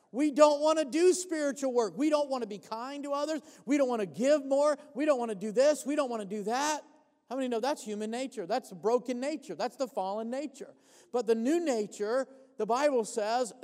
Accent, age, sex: American, 40-59, male